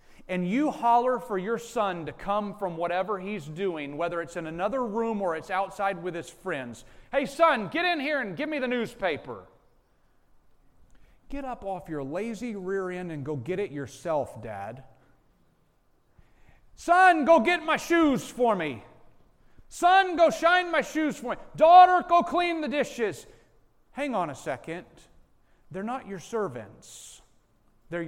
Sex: male